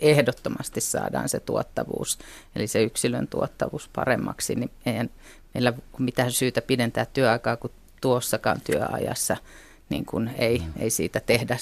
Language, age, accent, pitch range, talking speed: Finnish, 30-49, native, 110-125 Hz, 135 wpm